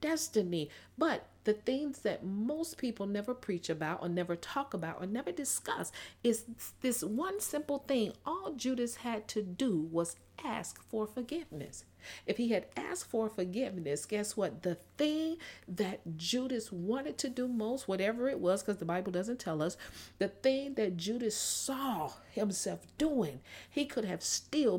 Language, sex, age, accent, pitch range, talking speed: English, female, 40-59, American, 180-245 Hz, 160 wpm